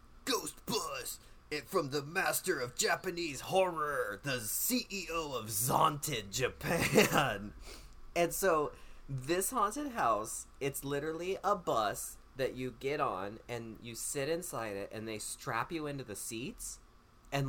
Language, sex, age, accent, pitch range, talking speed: English, male, 30-49, American, 105-160 Hz, 135 wpm